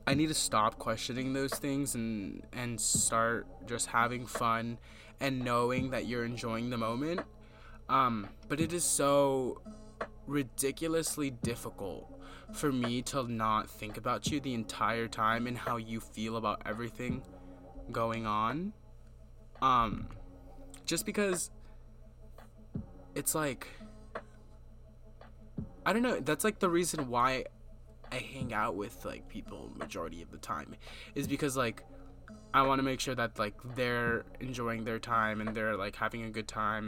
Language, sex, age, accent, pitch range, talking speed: English, male, 20-39, American, 110-135 Hz, 145 wpm